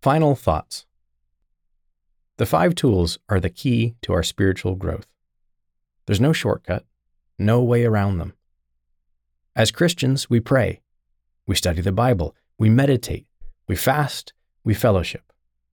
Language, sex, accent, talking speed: English, male, American, 125 wpm